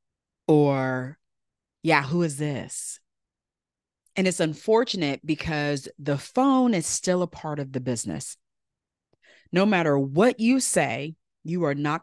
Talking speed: 130 wpm